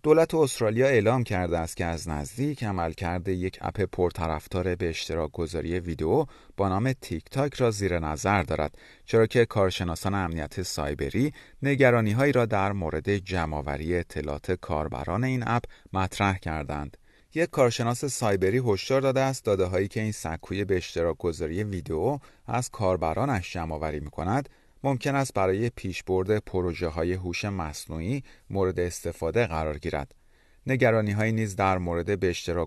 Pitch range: 85-120 Hz